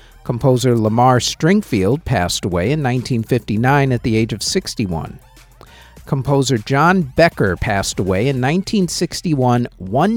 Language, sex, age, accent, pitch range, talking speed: English, male, 50-69, American, 120-155 Hz, 110 wpm